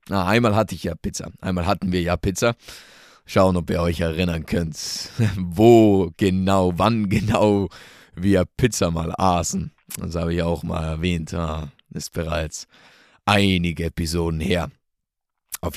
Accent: German